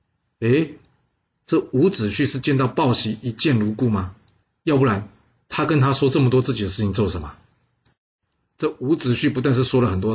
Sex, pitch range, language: male, 100-135 Hz, Chinese